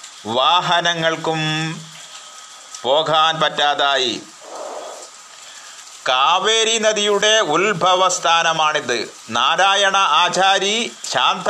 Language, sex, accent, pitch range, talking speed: Malayalam, male, native, 160-190 Hz, 50 wpm